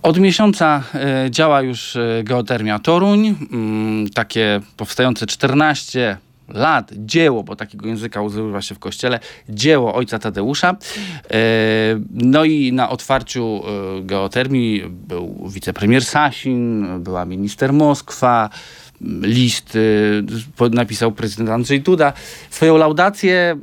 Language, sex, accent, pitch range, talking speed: Polish, male, native, 115-160 Hz, 100 wpm